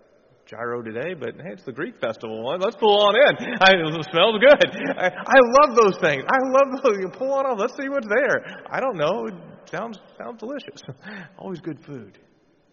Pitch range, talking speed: 115-170 Hz, 185 wpm